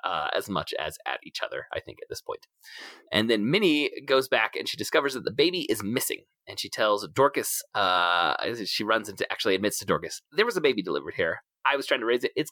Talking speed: 240 wpm